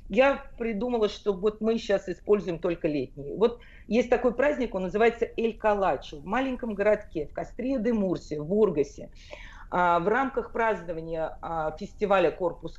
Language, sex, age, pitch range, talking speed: Russian, female, 40-59, 165-210 Hz, 145 wpm